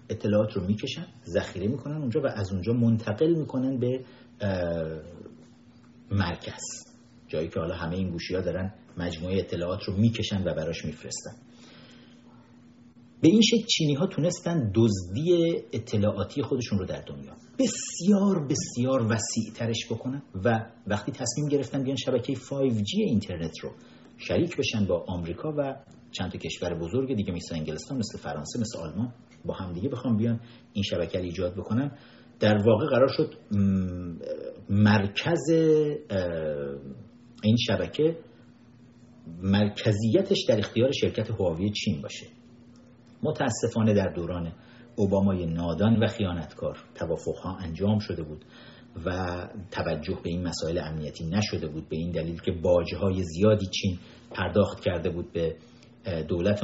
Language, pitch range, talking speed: Persian, 90-120 Hz, 130 wpm